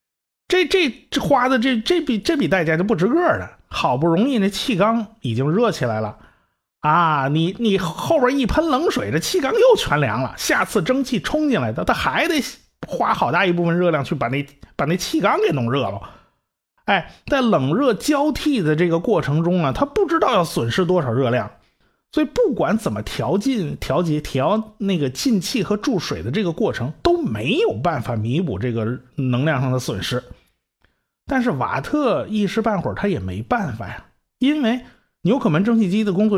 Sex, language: male, Chinese